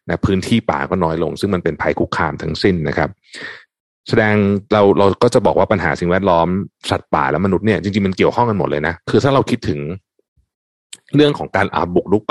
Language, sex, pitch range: Thai, male, 85-110 Hz